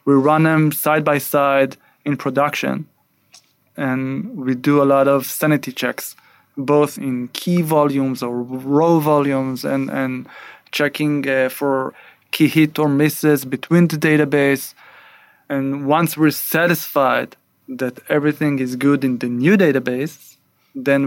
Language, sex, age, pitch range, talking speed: English, male, 20-39, 135-155 Hz, 135 wpm